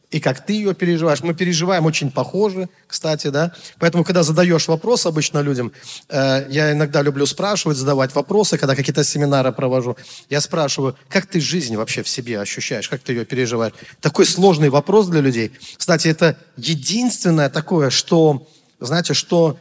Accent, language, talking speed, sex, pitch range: native, Russian, 160 wpm, male, 140-170 Hz